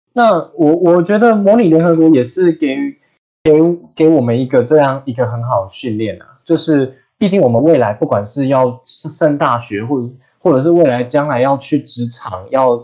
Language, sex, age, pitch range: Chinese, male, 20-39, 115-160 Hz